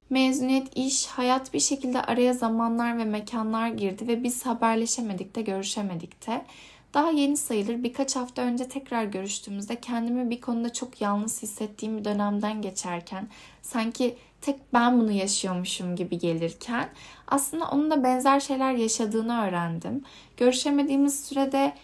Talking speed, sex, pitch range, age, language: 135 wpm, female, 210-275 Hz, 10-29, Turkish